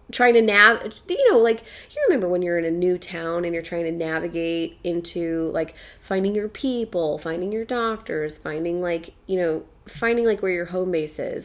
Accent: American